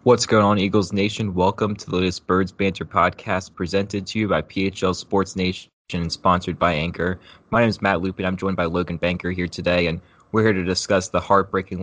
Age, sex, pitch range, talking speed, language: 20-39, male, 85-100 Hz, 215 wpm, English